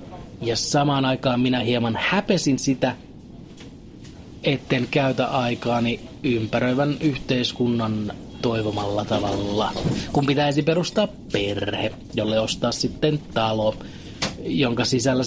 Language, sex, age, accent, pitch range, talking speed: Finnish, male, 30-49, native, 115-155 Hz, 95 wpm